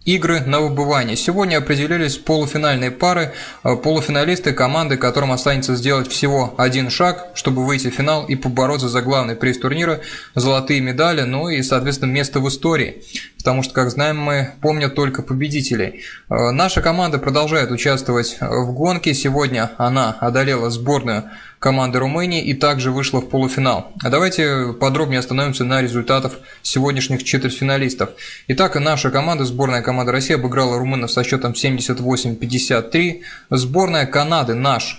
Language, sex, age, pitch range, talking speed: Russian, male, 20-39, 130-150 Hz, 135 wpm